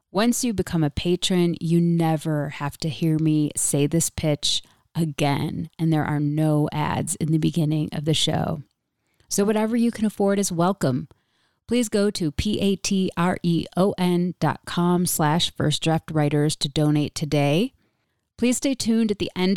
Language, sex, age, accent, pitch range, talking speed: English, female, 30-49, American, 150-175 Hz, 155 wpm